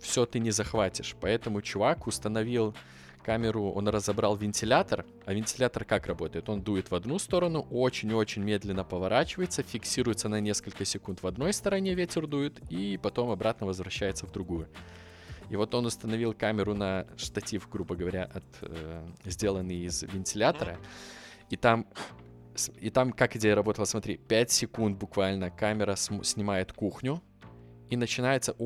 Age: 20-39